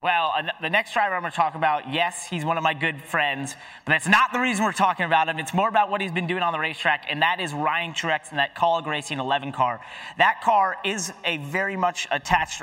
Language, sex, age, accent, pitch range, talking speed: English, male, 30-49, American, 150-190 Hz, 250 wpm